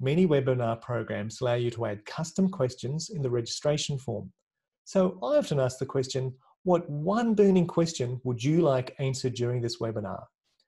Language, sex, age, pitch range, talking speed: English, male, 40-59, 125-170 Hz, 170 wpm